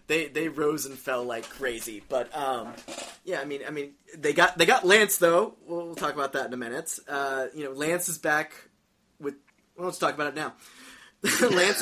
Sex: male